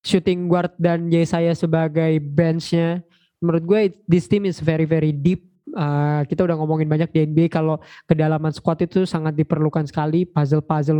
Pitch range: 155-180 Hz